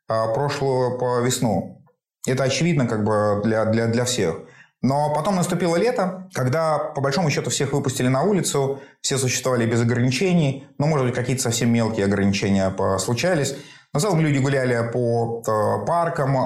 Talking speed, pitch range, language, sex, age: 155 wpm, 120-145 Hz, Russian, male, 30-49